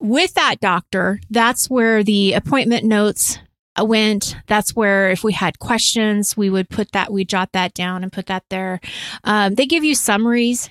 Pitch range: 190-235 Hz